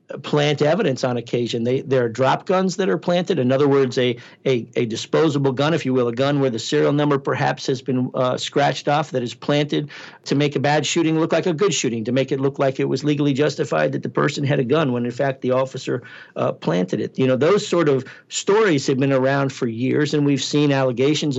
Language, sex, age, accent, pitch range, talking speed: English, male, 50-69, American, 130-150 Hz, 240 wpm